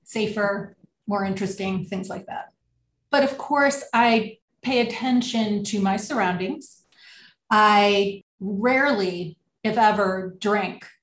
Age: 30-49